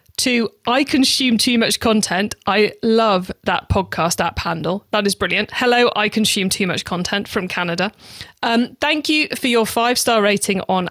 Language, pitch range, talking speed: English, 200-255 Hz, 170 wpm